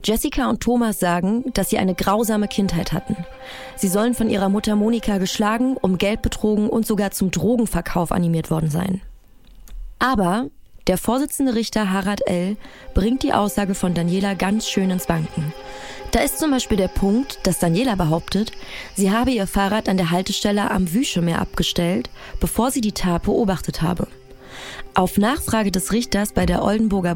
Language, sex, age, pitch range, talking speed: German, female, 20-39, 180-220 Hz, 165 wpm